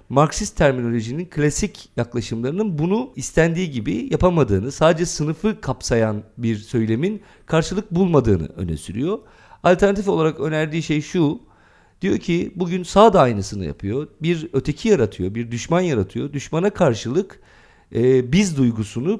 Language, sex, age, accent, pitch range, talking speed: Turkish, male, 50-69, native, 115-170 Hz, 125 wpm